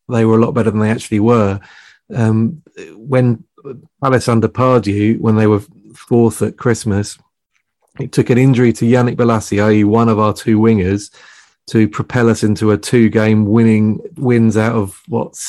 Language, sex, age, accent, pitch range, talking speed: English, male, 30-49, British, 105-125 Hz, 165 wpm